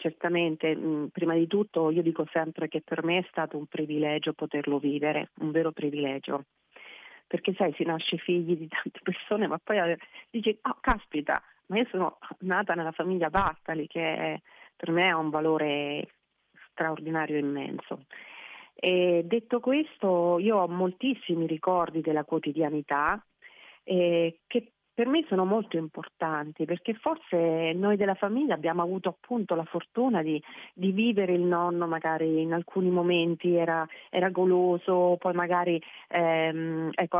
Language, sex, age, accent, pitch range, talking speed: Italian, female, 40-59, native, 155-185 Hz, 145 wpm